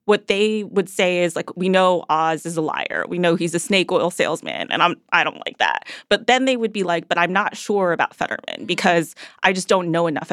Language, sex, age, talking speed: English, female, 20-39, 255 wpm